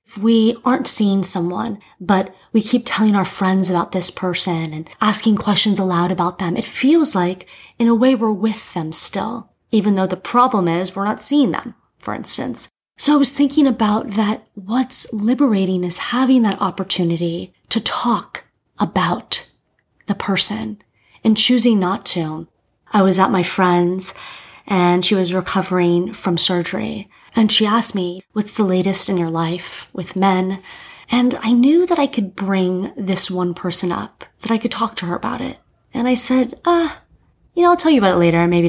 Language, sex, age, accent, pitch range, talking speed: English, female, 30-49, American, 185-235 Hz, 180 wpm